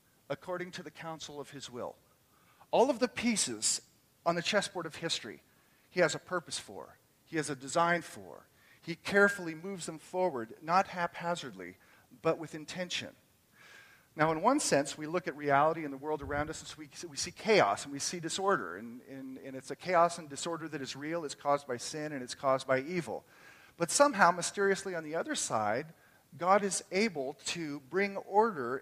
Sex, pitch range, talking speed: male, 145-195 Hz, 190 wpm